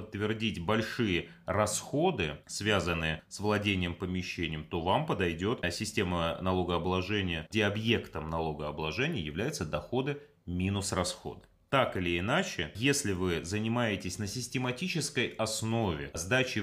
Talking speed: 110 wpm